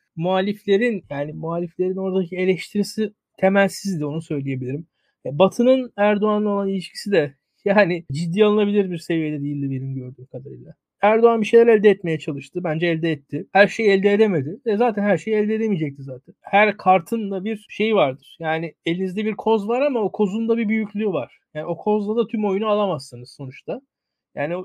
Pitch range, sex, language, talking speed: 170-230 Hz, male, Turkish, 170 wpm